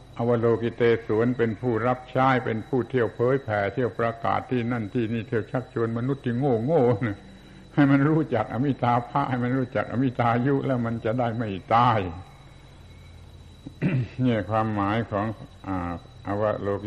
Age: 70-89